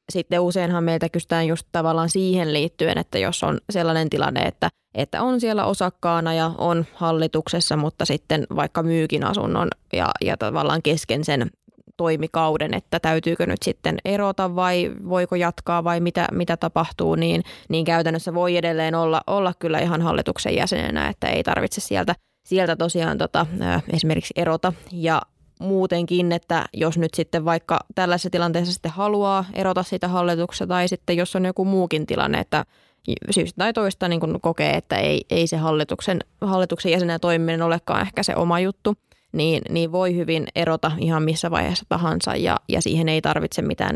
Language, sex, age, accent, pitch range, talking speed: Finnish, female, 20-39, native, 160-180 Hz, 165 wpm